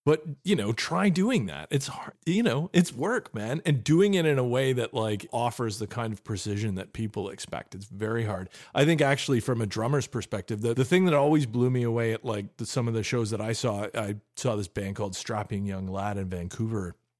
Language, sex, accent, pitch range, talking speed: English, male, American, 105-135 Hz, 235 wpm